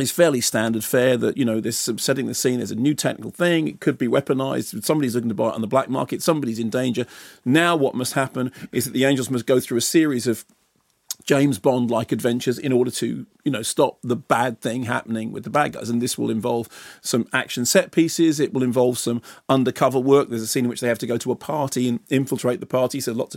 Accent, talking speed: British, 245 wpm